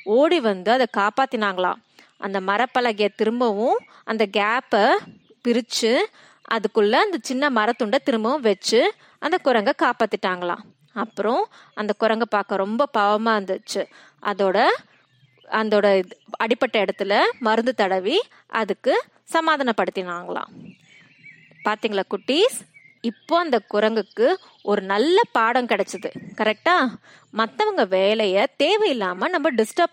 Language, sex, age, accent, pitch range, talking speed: Tamil, female, 20-39, native, 205-285 Hz, 100 wpm